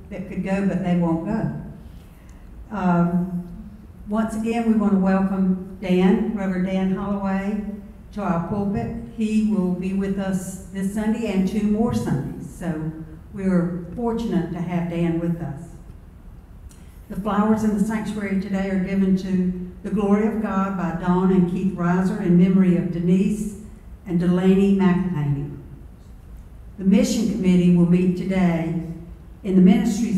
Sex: female